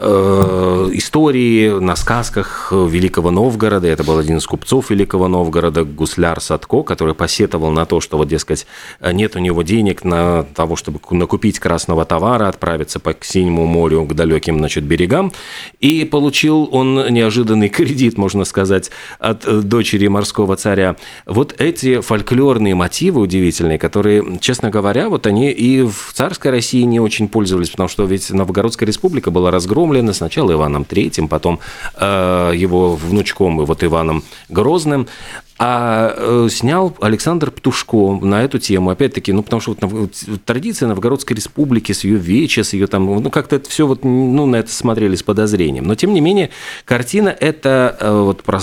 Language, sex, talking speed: Russian, male, 155 wpm